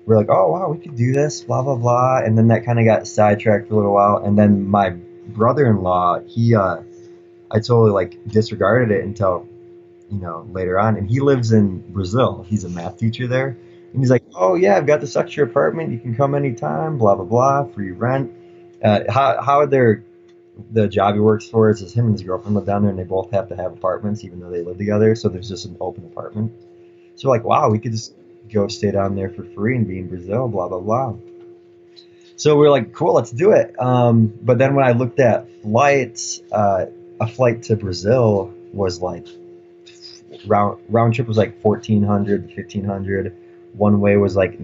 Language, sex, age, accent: English, male, 20-39, American